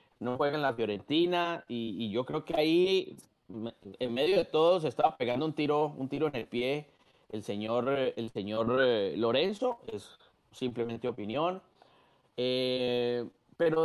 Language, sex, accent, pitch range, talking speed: Spanish, male, Mexican, 130-190 Hz, 150 wpm